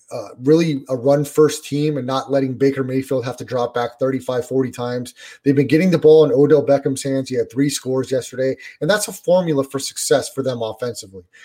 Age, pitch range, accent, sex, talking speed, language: 30-49, 135-155 Hz, American, male, 215 wpm, English